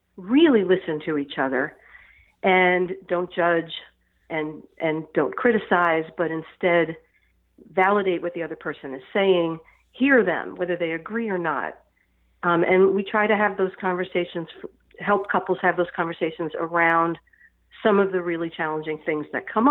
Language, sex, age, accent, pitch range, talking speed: English, female, 50-69, American, 160-200 Hz, 150 wpm